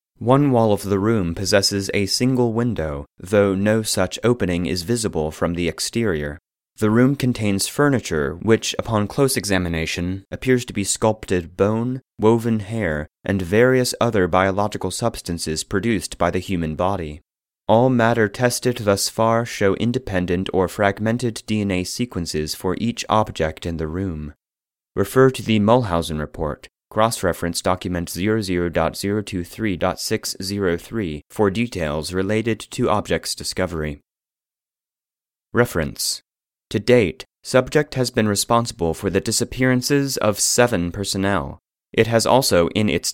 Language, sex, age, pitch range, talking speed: English, male, 30-49, 90-115 Hz, 130 wpm